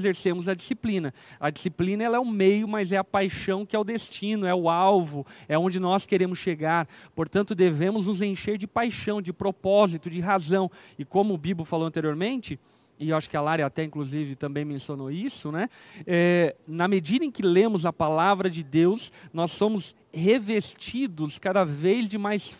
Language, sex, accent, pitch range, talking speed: Portuguese, male, Brazilian, 165-195 Hz, 185 wpm